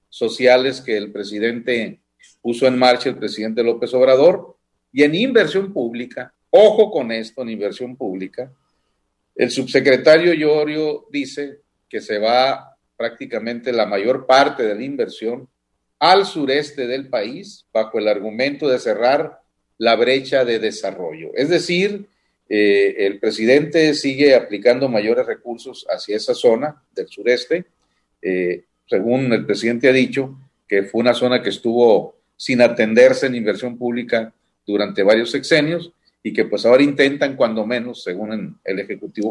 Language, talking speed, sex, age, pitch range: Spanish, 140 wpm, male, 40-59, 120-155 Hz